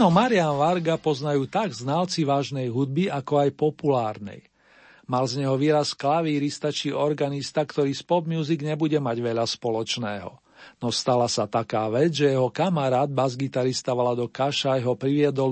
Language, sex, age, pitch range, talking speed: Slovak, male, 50-69, 130-155 Hz, 140 wpm